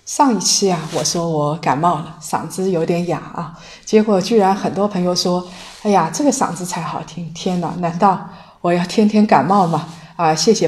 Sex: female